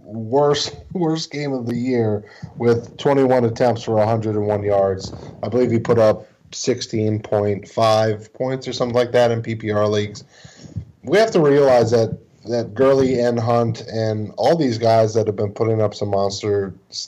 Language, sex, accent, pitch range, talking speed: English, male, American, 105-125 Hz, 160 wpm